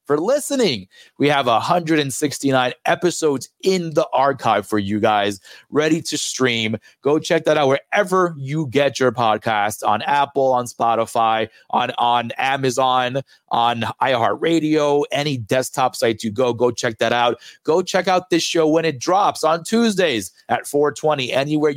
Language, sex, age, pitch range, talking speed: English, male, 30-49, 115-145 Hz, 150 wpm